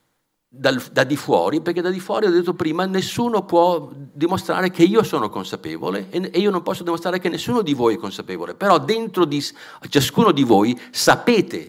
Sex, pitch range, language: male, 140-205 Hz, Italian